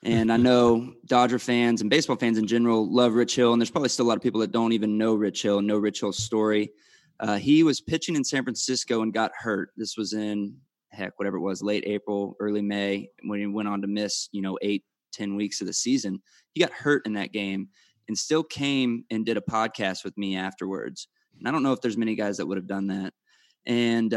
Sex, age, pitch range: male, 20-39, 100-115 Hz